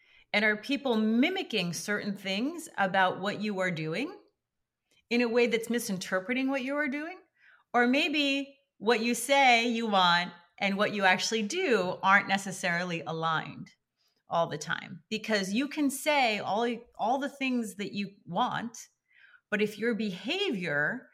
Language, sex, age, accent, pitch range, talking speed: English, female, 30-49, American, 175-230 Hz, 150 wpm